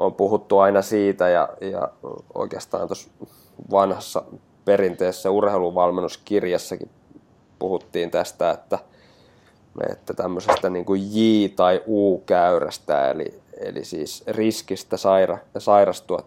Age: 20-39